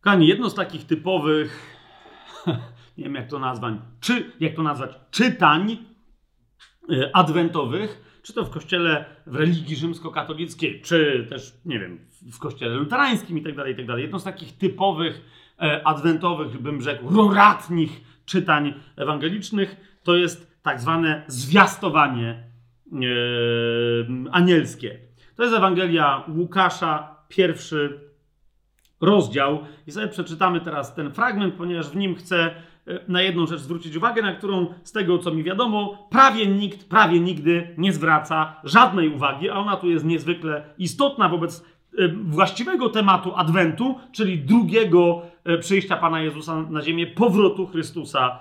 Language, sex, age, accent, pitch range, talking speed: Polish, male, 40-59, native, 150-190 Hz, 130 wpm